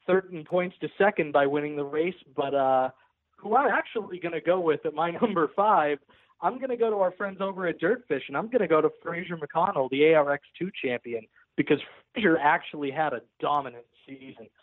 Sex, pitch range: male, 140-180 Hz